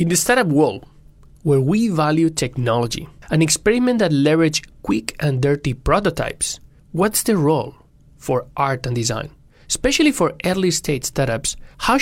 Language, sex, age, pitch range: Chinese, male, 30-49, 140-190 Hz